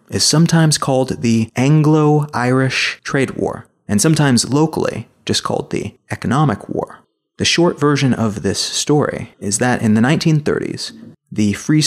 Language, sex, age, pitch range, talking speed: English, male, 30-49, 110-145 Hz, 140 wpm